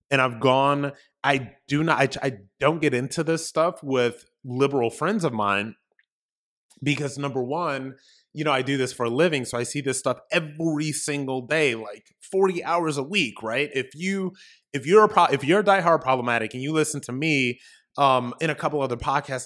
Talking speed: 195 wpm